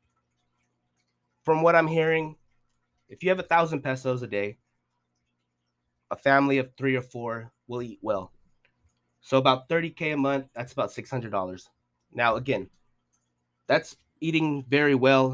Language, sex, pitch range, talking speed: English, male, 95-145 Hz, 135 wpm